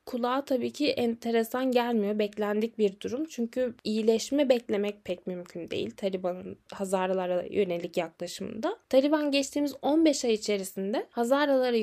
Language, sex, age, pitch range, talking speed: Turkish, female, 10-29, 205-265 Hz, 120 wpm